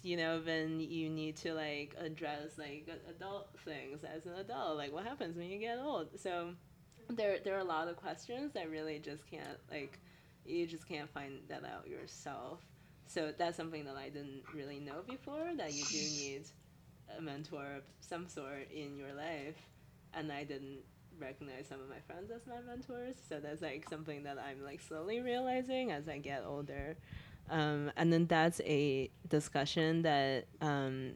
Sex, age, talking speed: female, 20-39, 180 wpm